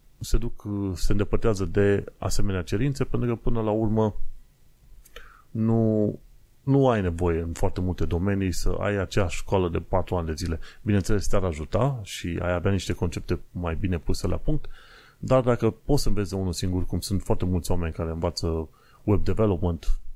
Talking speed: 175 wpm